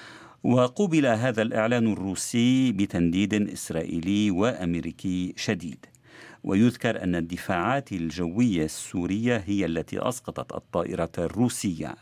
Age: 50-69